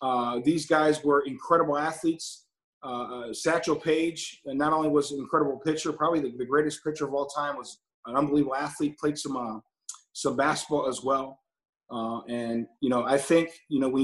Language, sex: English, male